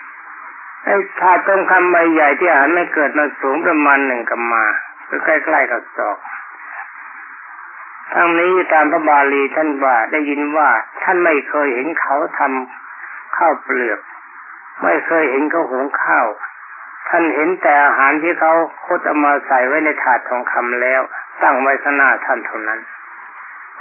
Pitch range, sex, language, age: 140-175 Hz, male, Thai, 60-79